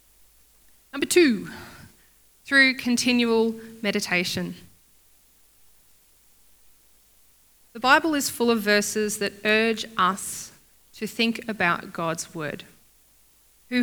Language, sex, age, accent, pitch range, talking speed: English, female, 20-39, Australian, 185-235 Hz, 85 wpm